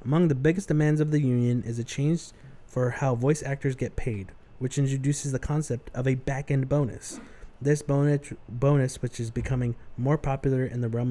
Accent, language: American, English